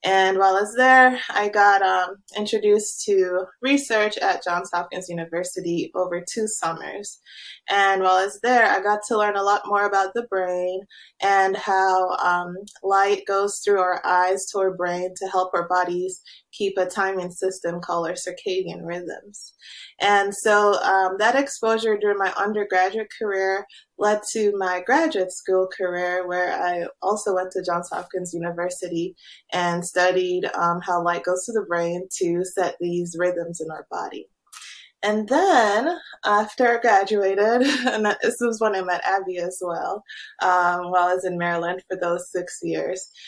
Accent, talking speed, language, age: American, 165 wpm, English, 20-39